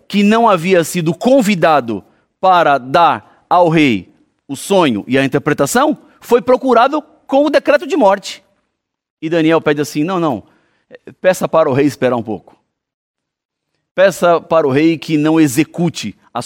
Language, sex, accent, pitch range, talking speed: Portuguese, male, Brazilian, 160-235 Hz, 155 wpm